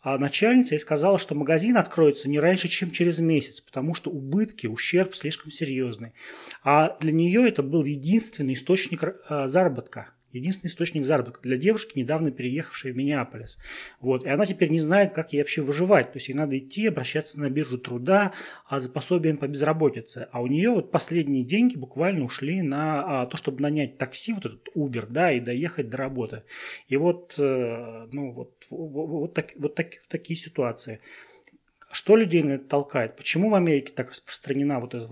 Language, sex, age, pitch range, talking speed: Russian, male, 30-49, 130-170 Hz, 175 wpm